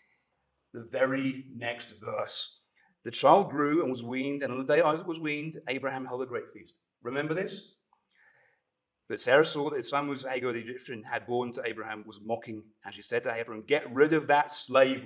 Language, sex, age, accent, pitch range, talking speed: English, male, 30-49, British, 120-150 Hz, 200 wpm